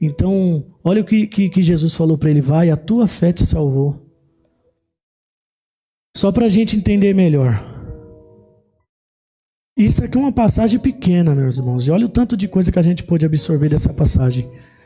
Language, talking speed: Portuguese, 175 wpm